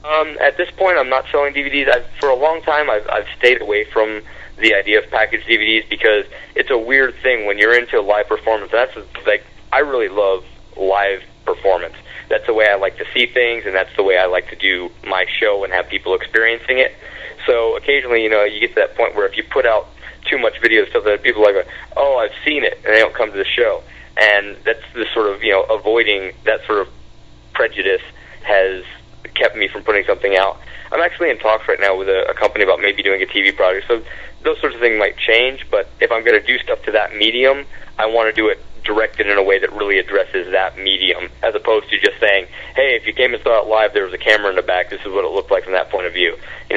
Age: 30-49